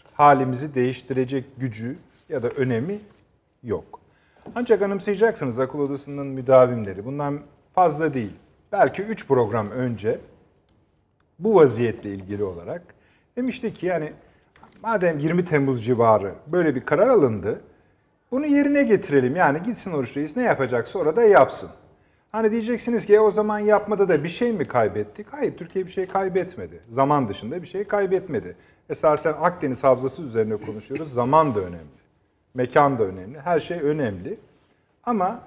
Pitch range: 130-195 Hz